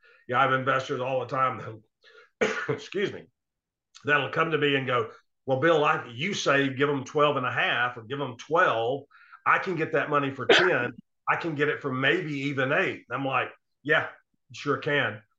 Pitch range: 125-160 Hz